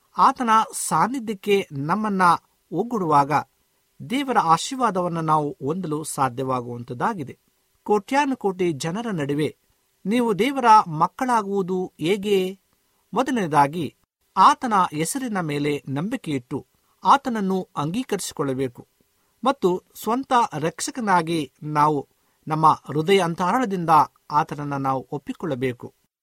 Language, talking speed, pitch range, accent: Kannada, 75 wpm, 140-220 Hz, native